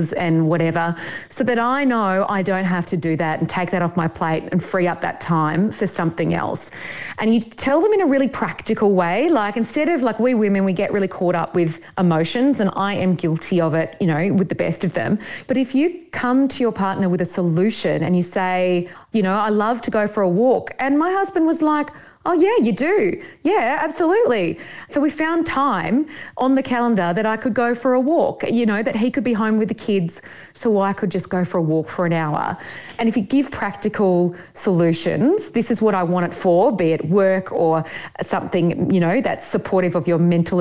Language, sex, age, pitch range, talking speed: English, female, 30-49, 180-255 Hz, 230 wpm